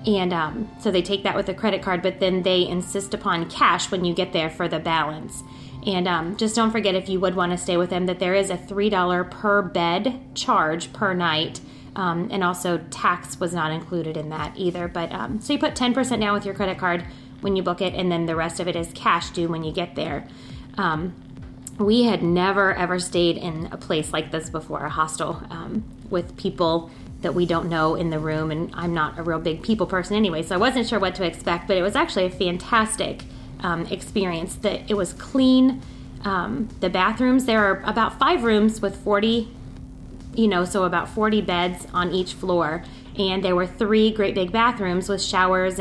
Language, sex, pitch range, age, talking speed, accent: English, female, 170-200 Hz, 30-49, 215 wpm, American